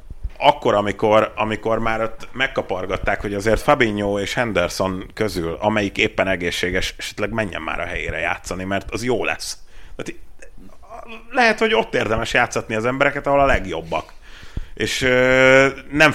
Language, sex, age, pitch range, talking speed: Hungarian, male, 30-49, 95-120 Hz, 135 wpm